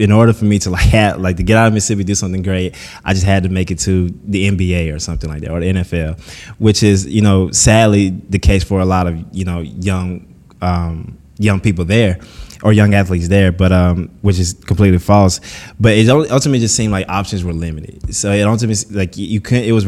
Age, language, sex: 20-39, English, male